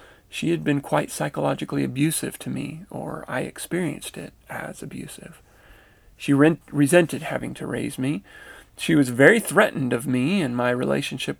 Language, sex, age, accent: English, male, 40-59, American